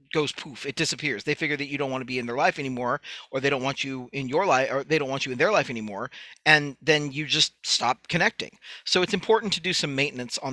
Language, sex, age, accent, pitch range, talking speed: English, male, 40-59, American, 140-175 Hz, 270 wpm